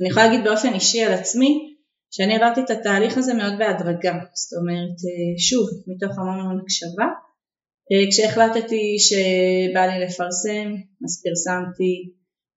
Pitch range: 180-225 Hz